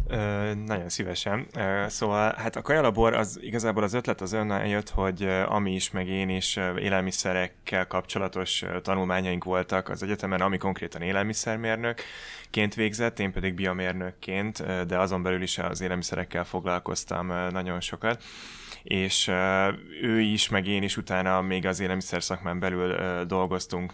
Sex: male